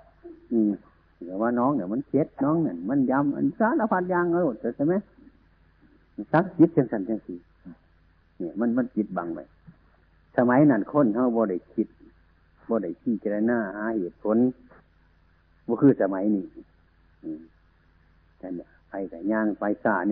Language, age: Thai, 60-79